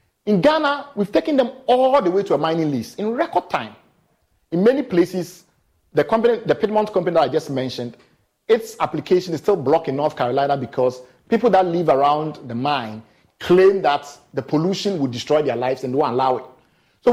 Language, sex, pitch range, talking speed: English, male, 145-195 Hz, 195 wpm